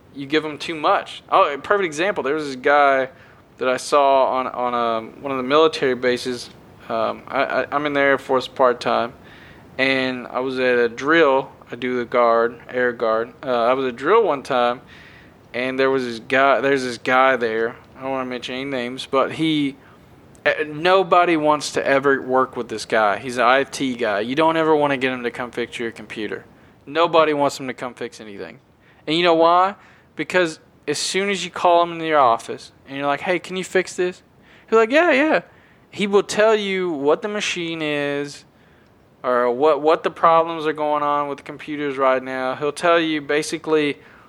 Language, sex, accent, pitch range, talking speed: English, male, American, 130-160 Hz, 205 wpm